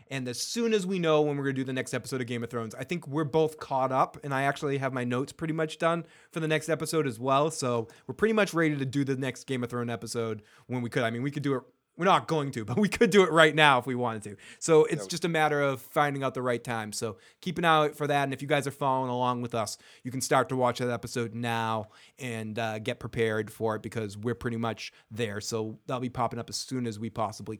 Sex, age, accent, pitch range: male, 20-39, American, 120-155 Hz